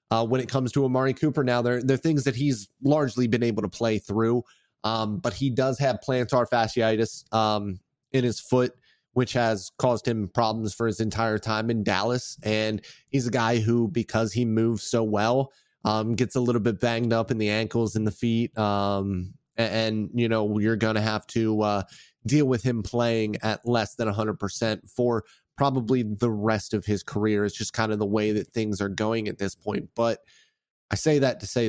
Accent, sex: American, male